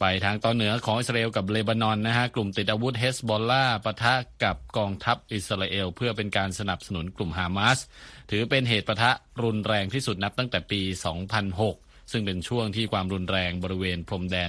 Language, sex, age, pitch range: Thai, male, 20-39, 90-115 Hz